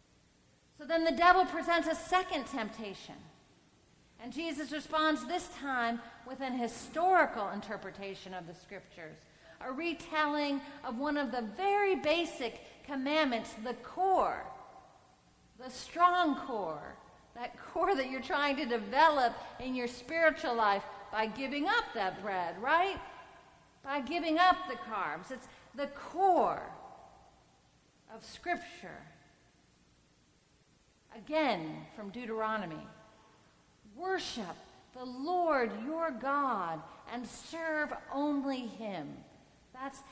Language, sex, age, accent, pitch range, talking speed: English, female, 40-59, American, 220-315 Hz, 110 wpm